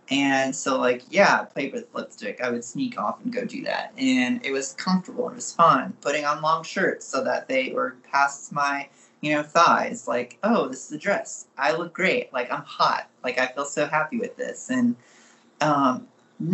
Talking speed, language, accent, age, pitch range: 205 wpm, English, American, 30-49, 135-210 Hz